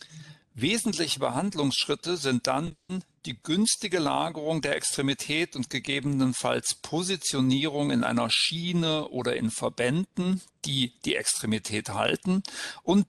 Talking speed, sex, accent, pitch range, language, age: 105 wpm, male, German, 120-160 Hz, English, 50-69